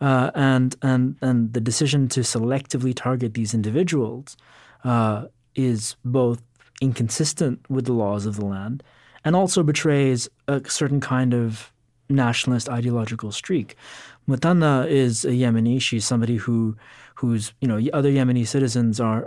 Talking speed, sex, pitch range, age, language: 140 wpm, male, 120-140 Hz, 30-49, English